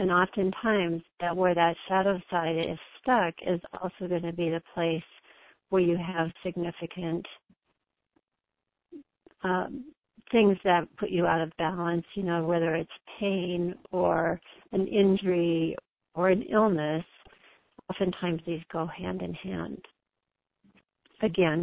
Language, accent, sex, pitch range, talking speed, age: English, American, female, 170-200 Hz, 130 wpm, 50-69